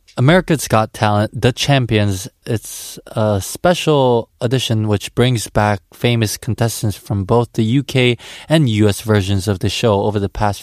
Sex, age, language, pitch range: male, 20-39, Korean, 100-125 Hz